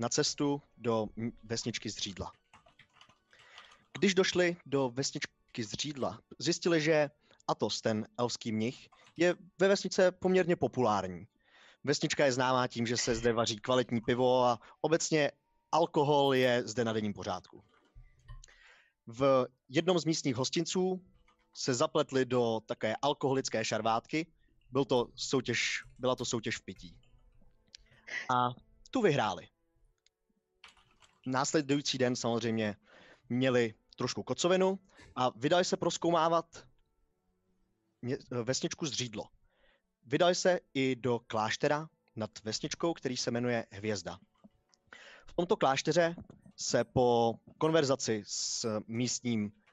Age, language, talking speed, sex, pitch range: 20-39, Czech, 115 wpm, male, 115-155 Hz